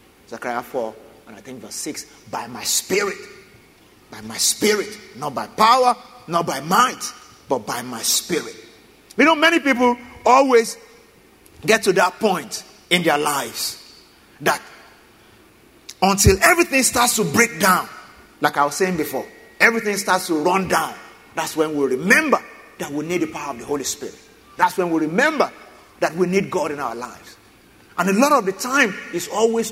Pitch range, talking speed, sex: 180-235 Hz, 170 wpm, male